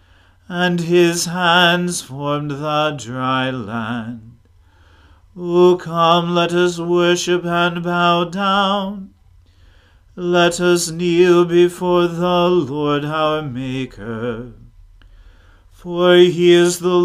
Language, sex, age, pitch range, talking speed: English, male, 40-59, 120-180 Hz, 95 wpm